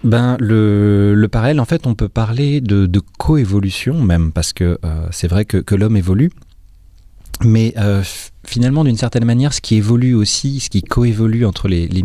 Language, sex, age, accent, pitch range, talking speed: French, male, 30-49, French, 95-115 Hz, 195 wpm